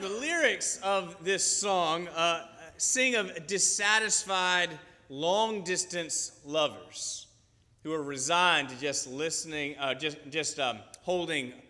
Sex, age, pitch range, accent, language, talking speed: male, 30-49, 130-185 Hz, American, English, 115 wpm